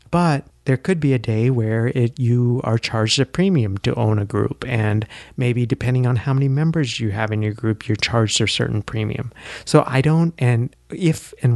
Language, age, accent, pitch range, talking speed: English, 30-49, American, 105-130 Hz, 205 wpm